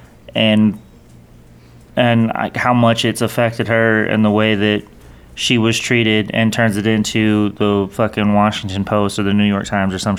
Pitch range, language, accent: 105-115 Hz, English, American